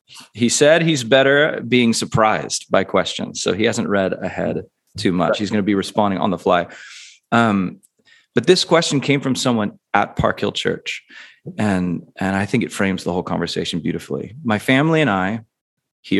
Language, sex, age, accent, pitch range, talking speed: English, male, 30-49, American, 110-145 Hz, 180 wpm